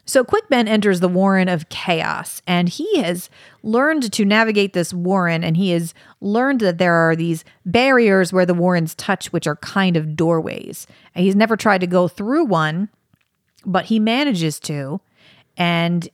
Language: English